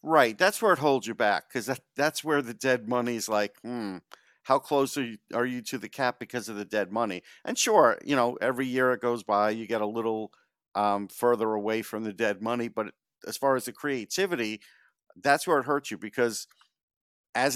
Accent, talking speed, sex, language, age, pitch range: American, 220 wpm, male, English, 50-69, 105-130 Hz